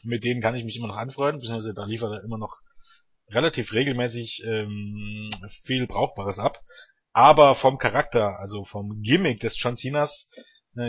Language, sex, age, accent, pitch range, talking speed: German, male, 30-49, German, 115-145 Hz, 165 wpm